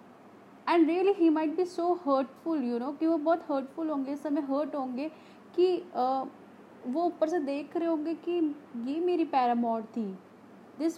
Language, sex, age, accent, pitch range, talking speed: Hindi, female, 30-49, native, 225-290 Hz, 170 wpm